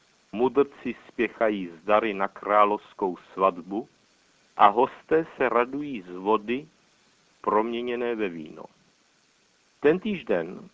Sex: male